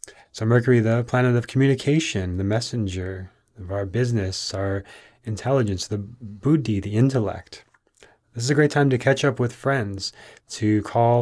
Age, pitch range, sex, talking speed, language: 30-49, 105-125 Hz, male, 155 wpm, English